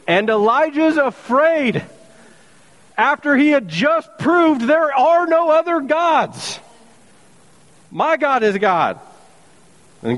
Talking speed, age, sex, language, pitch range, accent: 105 wpm, 40-59, male, English, 135-195 Hz, American